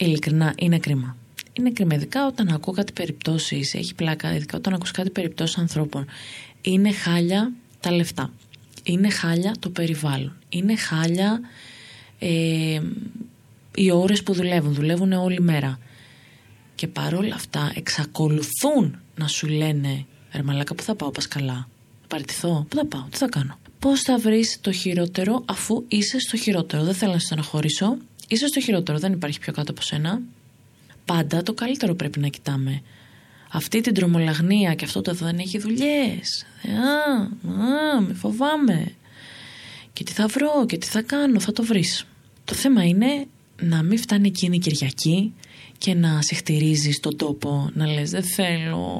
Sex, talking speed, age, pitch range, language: female, 155 wpm, 20-39, 150-210 Hz, Greek